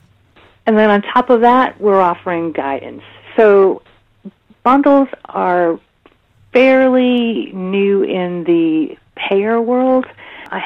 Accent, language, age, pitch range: American, English, 50-69, 165-205 Hz